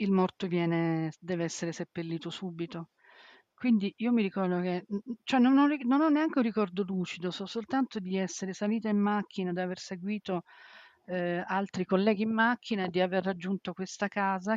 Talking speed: 175 wpm